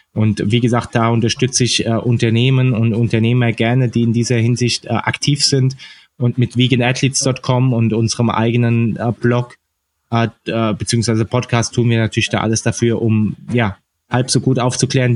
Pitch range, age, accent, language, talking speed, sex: 115-125 Hz, 20-39, German, German, 160 wpm, male